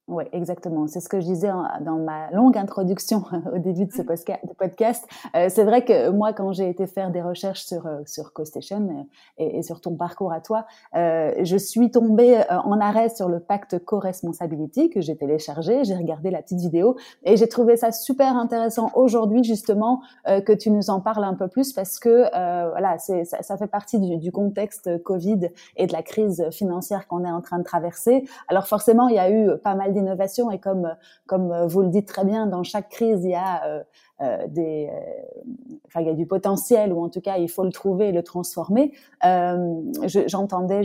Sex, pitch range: female, 180-220 Hz